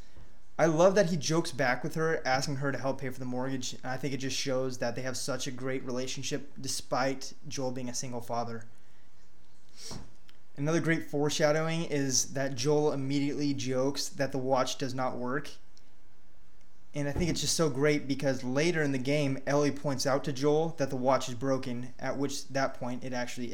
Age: 20-39